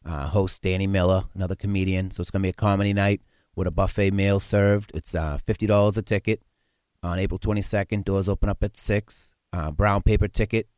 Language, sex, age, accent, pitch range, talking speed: English, male, 30-49, American, 85-100 Hz, 195 wpm